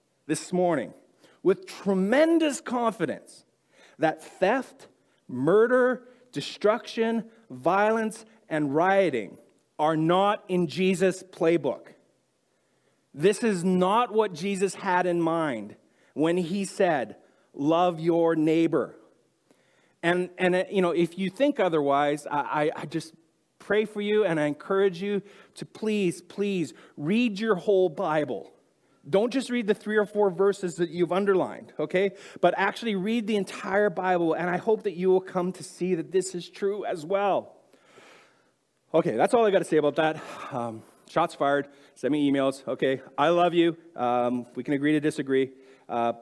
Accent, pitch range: American, 160-210 Hz